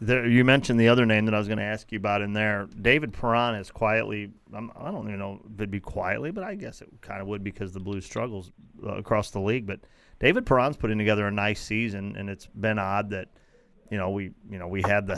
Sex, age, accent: male, 40-59, American